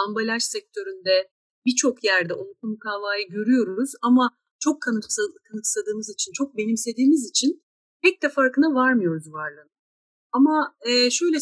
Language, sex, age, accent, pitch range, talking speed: Turkish, female, 40-59, native, 210-295 Hz, 110 wpm